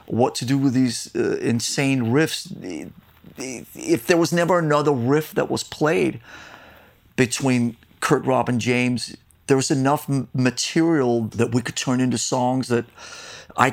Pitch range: 115-140 Hz